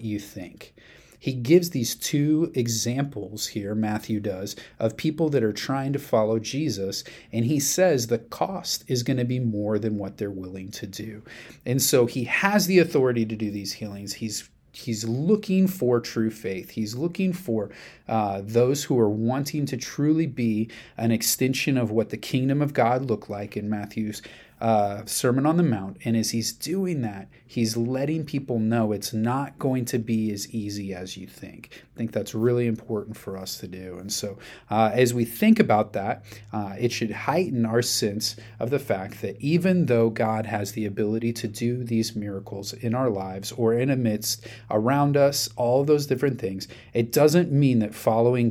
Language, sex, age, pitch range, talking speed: English, male, 30-49, 105-130 Hz, 190 wpm